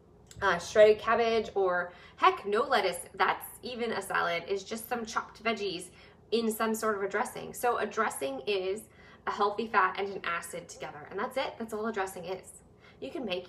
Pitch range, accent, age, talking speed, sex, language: 190-225 Hz, American, 20-39, 195 wpm, female, English